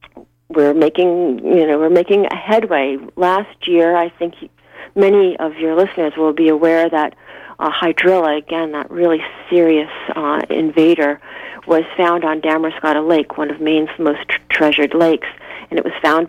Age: 40-59